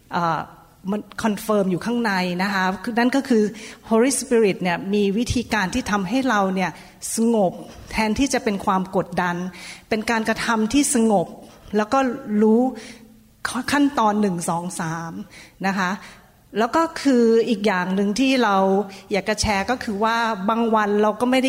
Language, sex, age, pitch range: Thai, female, 30-49, 195-245 Hz